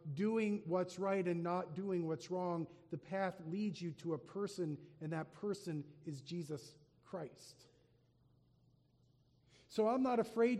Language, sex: English, male